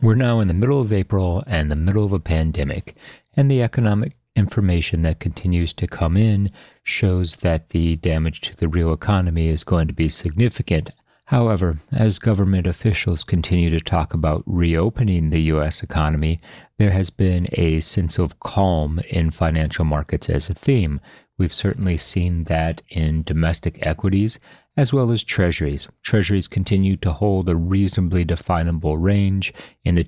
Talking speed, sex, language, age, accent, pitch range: 160 wpm, male, English, 40-59, American, 80-100 Hz